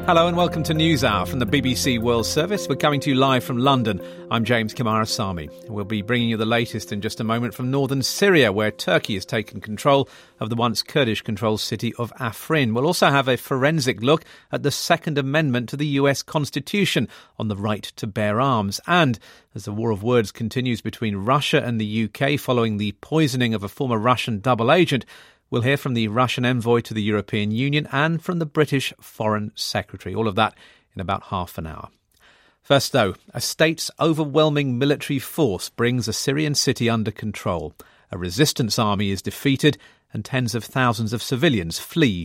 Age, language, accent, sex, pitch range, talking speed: 40-59, English, British, male, 110-140 Hz, 195 wpm